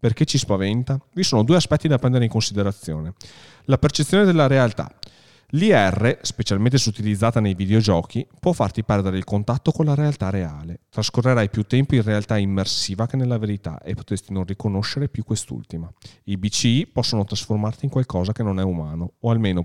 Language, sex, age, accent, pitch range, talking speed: Italian, male, 40-59, native, 100-135 Hz, 170 wpm